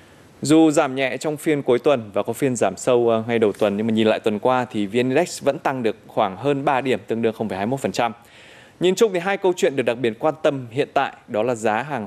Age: 20-39